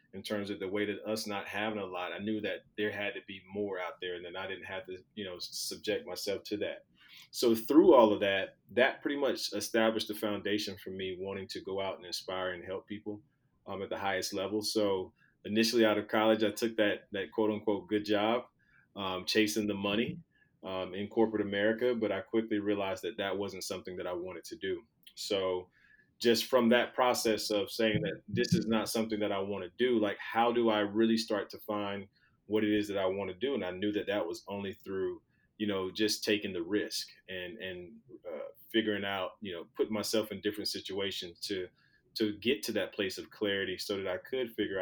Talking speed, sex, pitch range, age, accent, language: 220 wpm, male, 95-110 Hz, 30-49, American, English